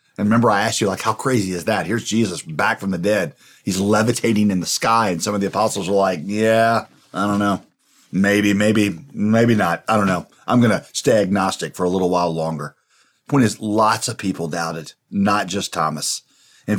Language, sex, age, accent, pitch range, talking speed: English, male, 40-59, American, 95-115 Hz, 210 wpm